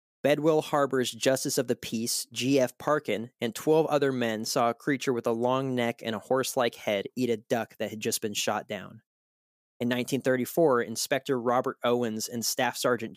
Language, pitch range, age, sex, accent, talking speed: English, 115-140 Hz, 20-39, male, American, 180 wpm